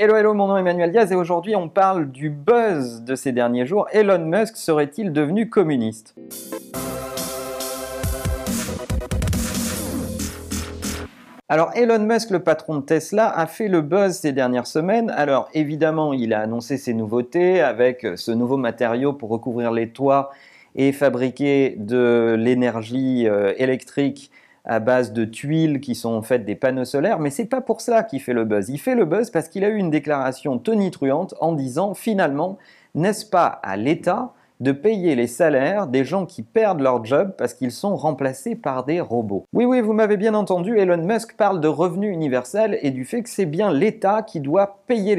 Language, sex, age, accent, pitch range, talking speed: French, male, 40-59, French, 130-200 Hz, 175 wpm